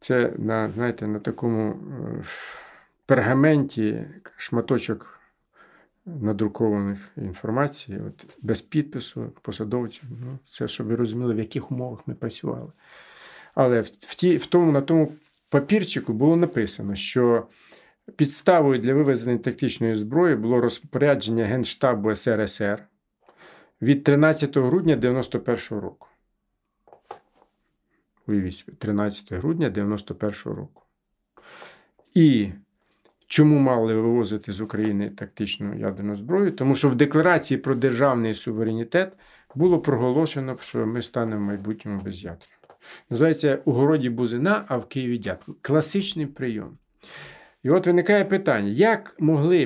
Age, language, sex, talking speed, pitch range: 50-69, Ukrainian, male, 110 wpm, 110-150 Hz